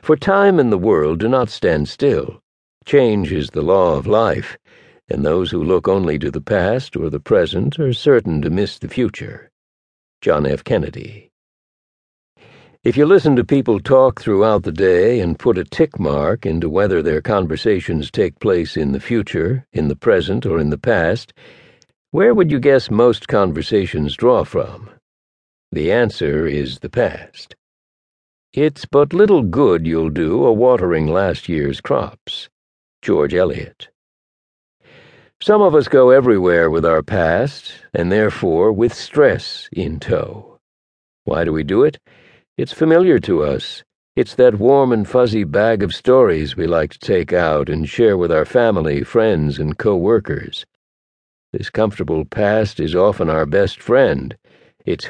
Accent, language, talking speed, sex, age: American, English, 155 wpm, male, 60-79